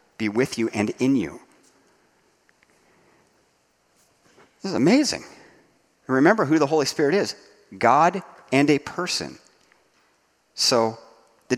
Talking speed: 110 wpm